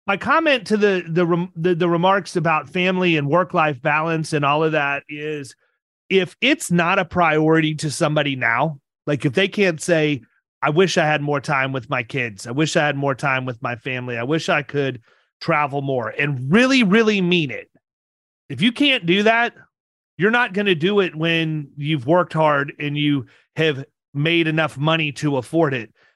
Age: 30-49